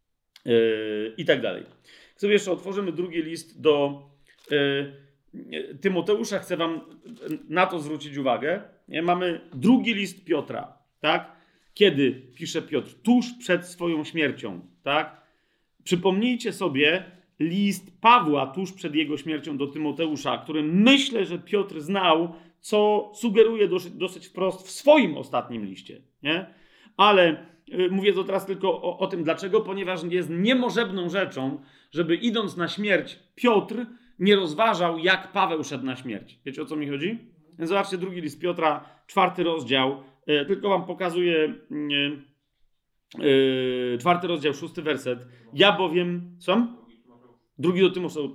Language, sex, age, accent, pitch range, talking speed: Polish, male, 40-59, native, 145-195 Hz, 135 wpm